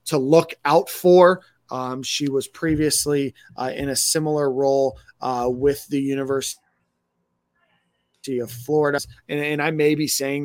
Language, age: English, 30-49